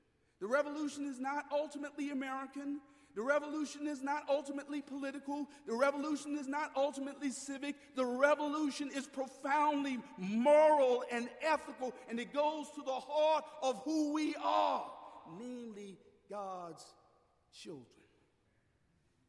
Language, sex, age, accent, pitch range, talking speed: English, male, 50-69, American, 175-280 Hz, 120 wpm